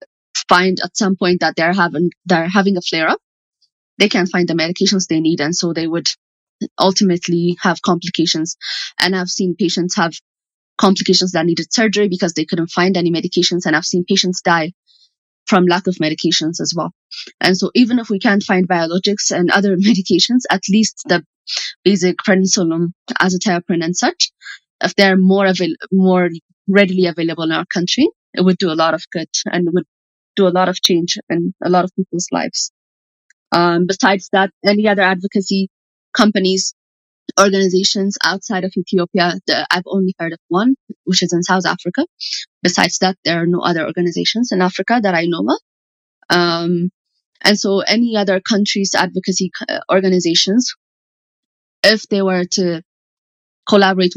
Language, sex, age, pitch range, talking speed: English, female, 20-39, 170-195 Hz, 165 wpm